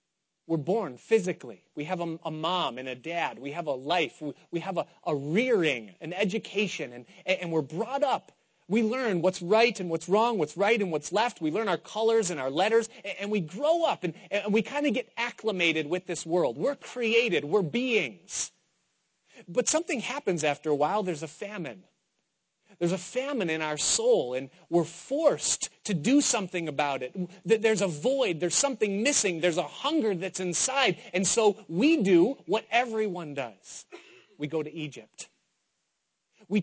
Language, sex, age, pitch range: English, male, 30-49, 175-230 Hz